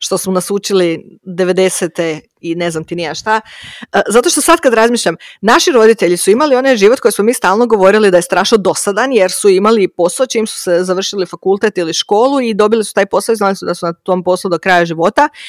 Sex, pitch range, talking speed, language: female, 190-285 Hz, 225 wpm, Croatian